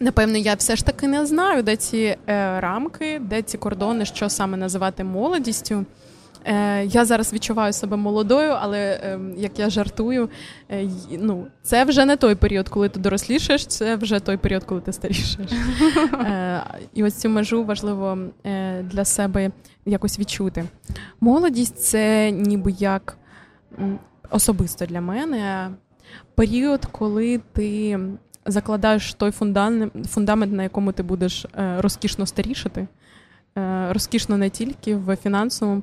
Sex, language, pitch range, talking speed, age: female, Ukrainian, 190-220 Hz, 140 wpm, 20-39